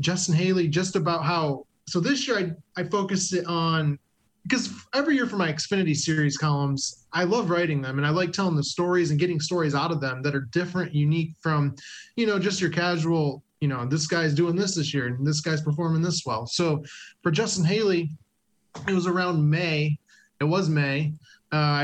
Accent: American